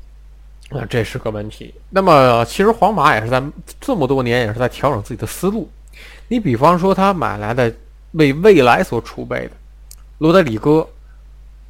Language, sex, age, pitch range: Chinese, male, 20-39, 105-155 Hz